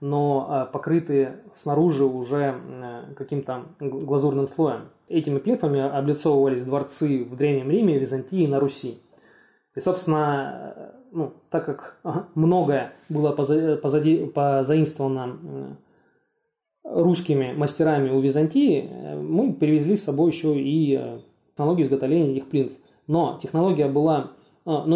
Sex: male